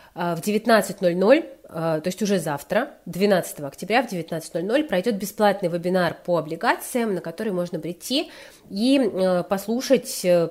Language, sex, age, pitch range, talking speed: Russian, female, 30-49, 170-215 Hz, 120 wpm